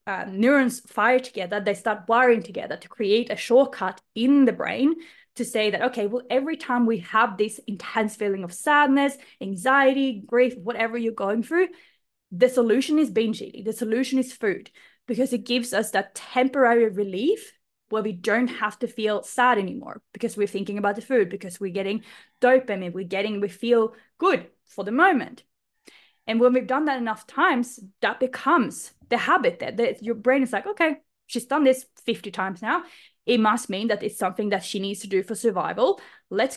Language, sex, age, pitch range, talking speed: English, female, 20-39, 205-260 Hz, 190 wpm